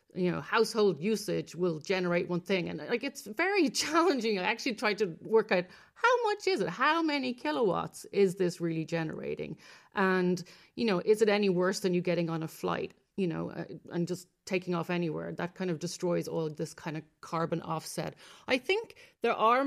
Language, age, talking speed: English, 40-59, 200 wpm